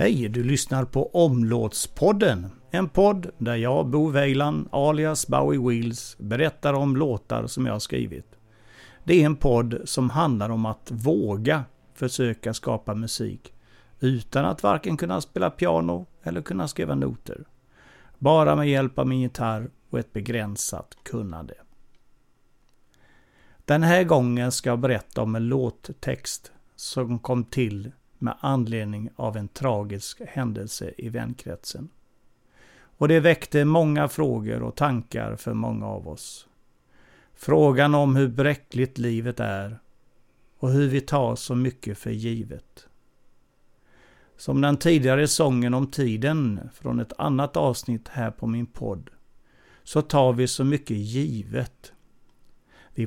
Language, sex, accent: Swedish, male, native